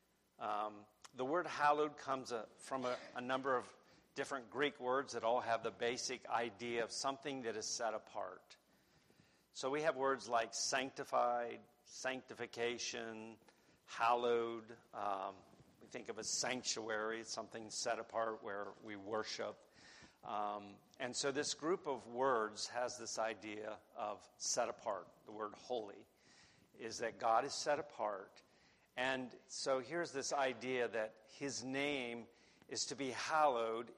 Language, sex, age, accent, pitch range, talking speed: English, male, 50-69, American, 110-130 Hz, 140 wpm